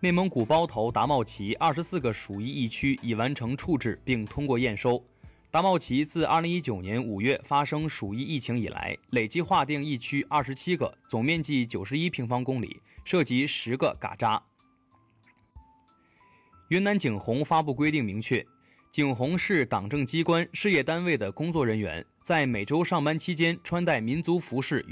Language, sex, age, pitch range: Chinese, male, 20-39, 115-160 Hz